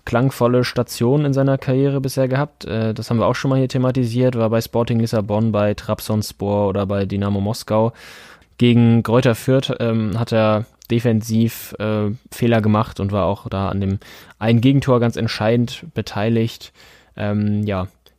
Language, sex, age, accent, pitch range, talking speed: German, male, 10-29, German, 105-130 Hz, 150 wpm